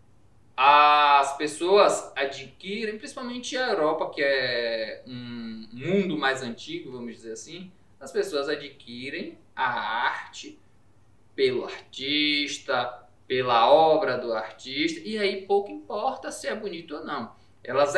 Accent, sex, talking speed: Brazilian, male, 120 wpm